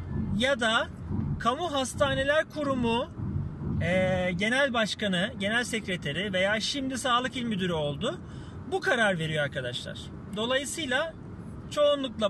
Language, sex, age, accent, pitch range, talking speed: Turkish, male, 40-59, native, 190-275 Hz, 105 wpm